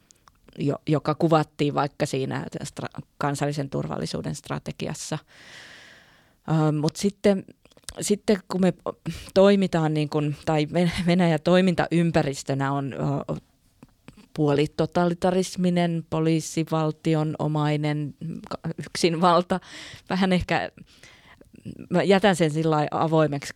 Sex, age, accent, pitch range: female, 20-39, native, 145-170 Hz